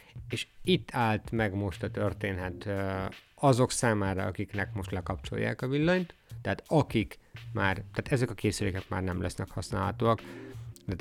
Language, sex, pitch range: Hungarian, male, 95-120 Hz